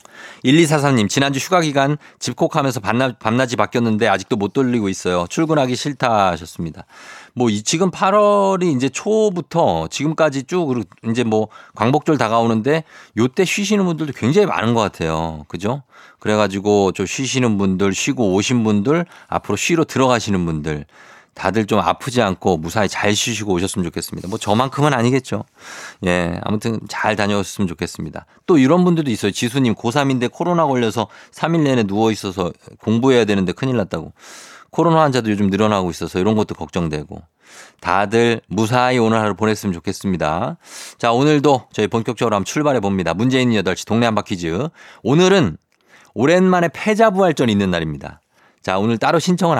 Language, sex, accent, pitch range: Korean, male, native, 100-150 Hz